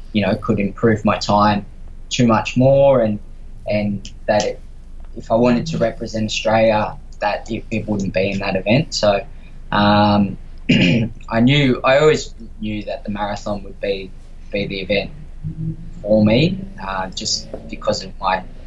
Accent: Australian